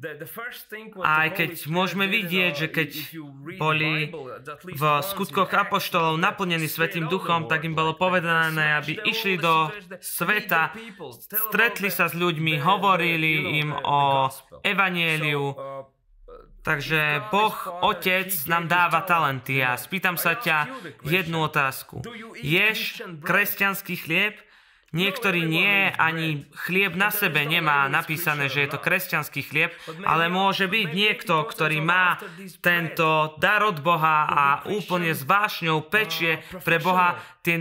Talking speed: 120 wpm